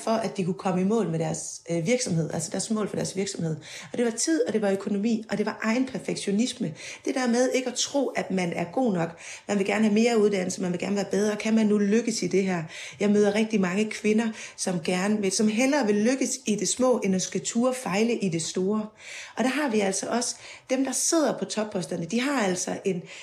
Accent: native